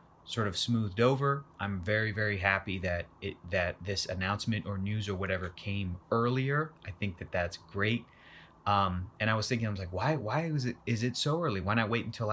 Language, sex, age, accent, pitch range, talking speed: English, male, 30-49, American, 95-110 Hz, 215 wpm